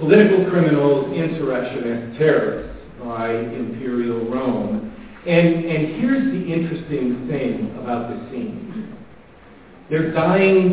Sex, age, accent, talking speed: male, 50-69, American, 100 wpm